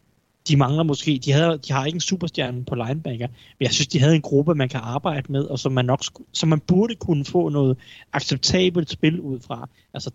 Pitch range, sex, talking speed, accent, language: 125-150 Hz, male, 220 wpm, native, Danish